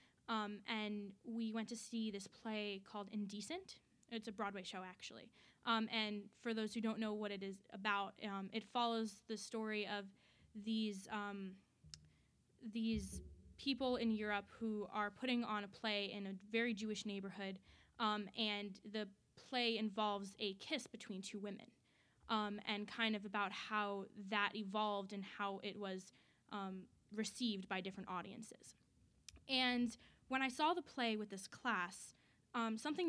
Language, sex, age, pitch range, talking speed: English, female, 20-39, 205-230 Hz, 160 wpm